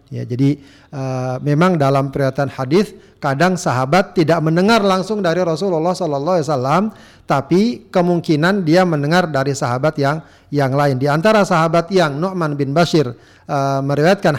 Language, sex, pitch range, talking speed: Indonesian, male, 125-175 Hz, 145 wpm